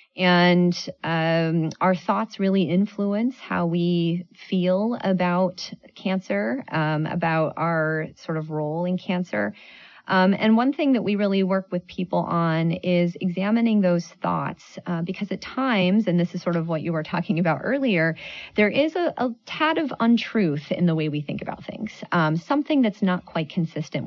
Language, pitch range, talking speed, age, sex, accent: English, 160-195 Hz, 170 wpm, 30-49, female, American